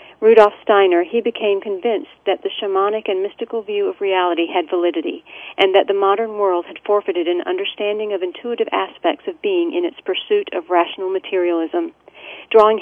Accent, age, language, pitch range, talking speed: American, 40-59, English, 190-295 Hz, 170 wpm